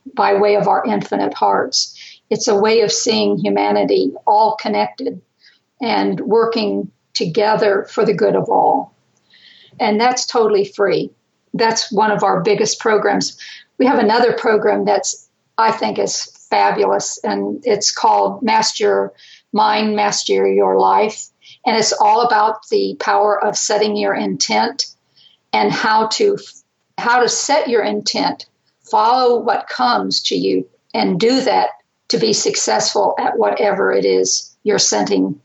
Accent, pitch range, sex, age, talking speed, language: American, 195-245 Hz, female, 50-69, 140 wpm, English